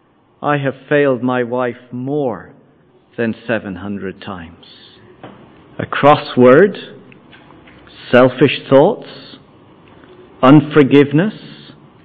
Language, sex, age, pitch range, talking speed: English, male, 50-69, 145-220 Hz, 70 wpm